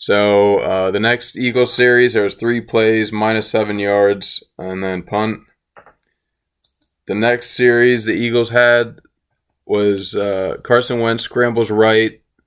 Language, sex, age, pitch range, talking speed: English, male, 20-39, 95-115 Hz, 135 wpm